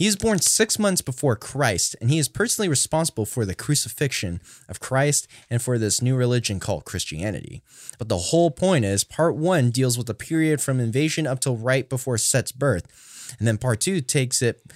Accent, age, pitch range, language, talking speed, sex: American, 10-29, 115-150 Hz, English, 200 wpm, male